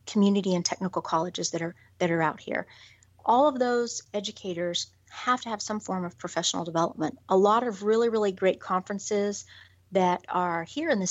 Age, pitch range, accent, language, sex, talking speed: 30-49, 170-200 Hz, American, English, female, 180 wpm